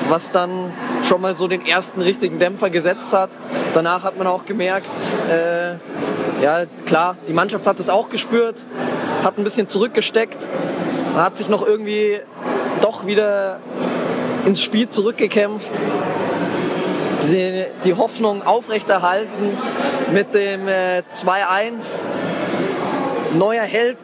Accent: German